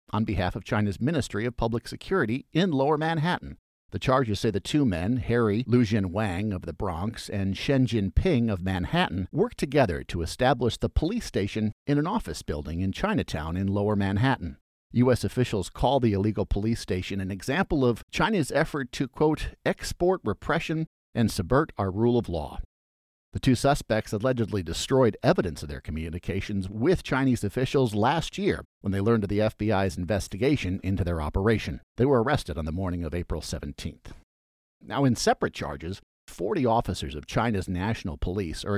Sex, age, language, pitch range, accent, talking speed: male, 50-69, English, 90-125 Hz, American, 170 wpm